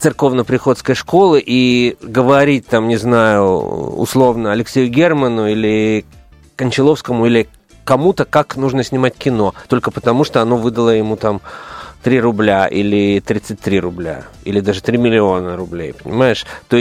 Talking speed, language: 130 wpm, Russian